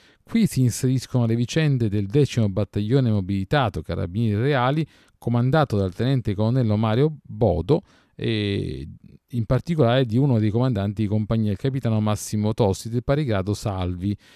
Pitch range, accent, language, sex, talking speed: 105-135 Hz, native, Italian, male, 140 wpm